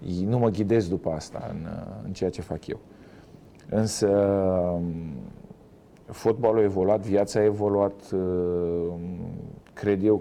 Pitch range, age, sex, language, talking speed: 90-110 Hz, 40-59, male, Romanian, 120 wpm